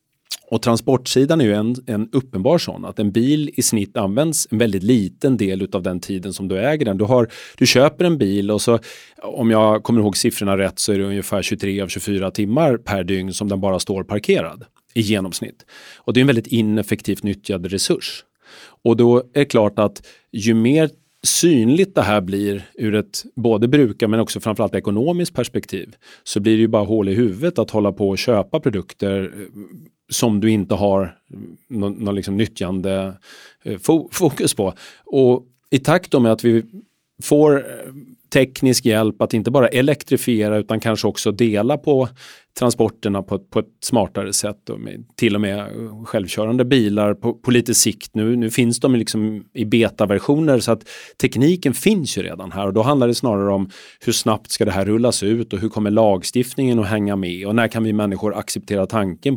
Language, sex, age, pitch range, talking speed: Swedish, male, 30-49, 100-120 Hz, 185 wpm